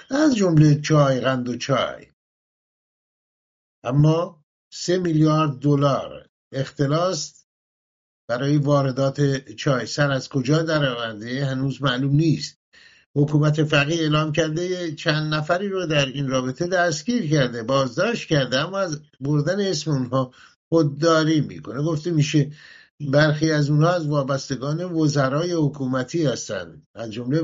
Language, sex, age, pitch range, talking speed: English, male, 50-69, 135-170 Hz, 120 wpm